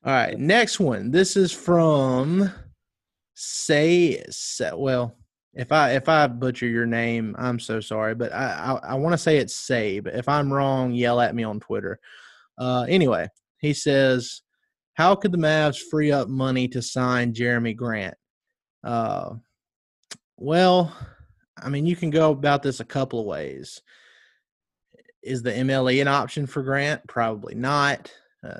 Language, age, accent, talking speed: English, 20-39, American, 155 wpm